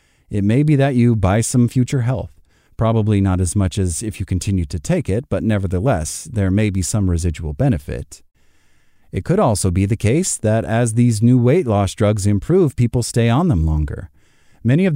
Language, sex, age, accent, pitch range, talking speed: English, male, 30-49, American, 95-120 Hz, 195 wpm